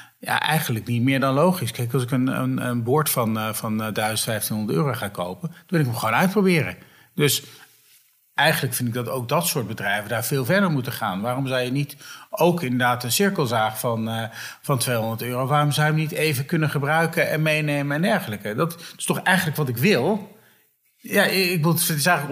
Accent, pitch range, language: Dutch, 125-170 Hz, Dutch